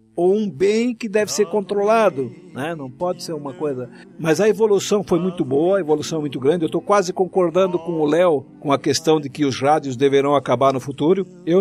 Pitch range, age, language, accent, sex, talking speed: 140-190 Hz, 60-79, Portuguese, Brazilian, male, 220 wpm